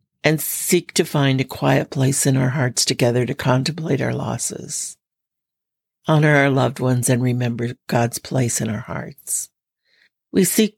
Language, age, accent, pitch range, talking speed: English, 60-79, American, 125-150 Hz, 155 wpm